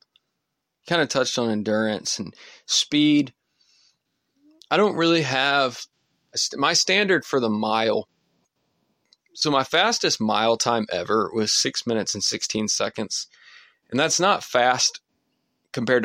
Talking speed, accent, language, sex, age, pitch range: 125 wpm, American, English, male, 20-39, 110-135 Hz